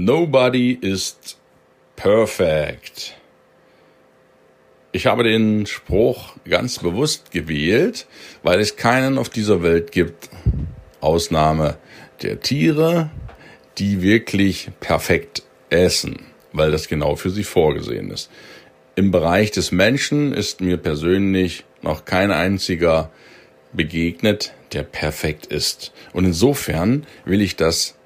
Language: German